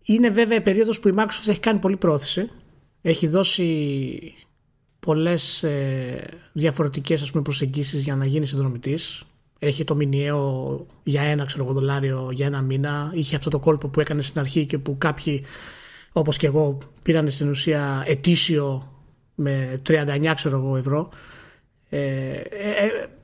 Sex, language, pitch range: male, Greek, 140-195 Hz